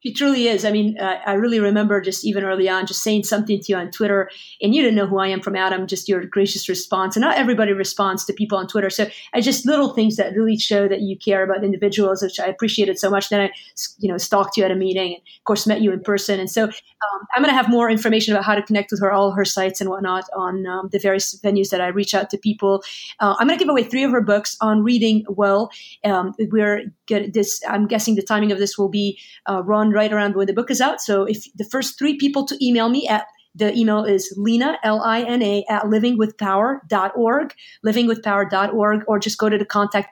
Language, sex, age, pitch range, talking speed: English, female, 30-49, 195-215 Hz, 245 wpm